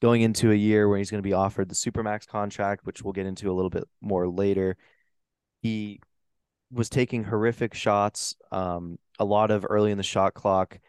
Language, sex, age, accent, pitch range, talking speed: English, male, 20-39, American, 95-110 Hz, 200 wpm